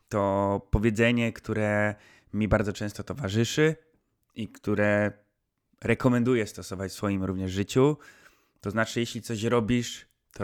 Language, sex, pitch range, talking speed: Polish, male, 100-125 Hz, 120 wpm